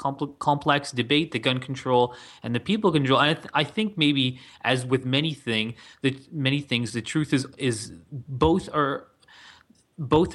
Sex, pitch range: male, 125-155 Hz